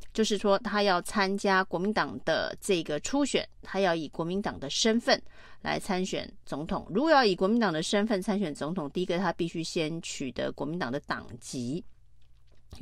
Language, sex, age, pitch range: Chinese, female, 30-49, 165-215 Hz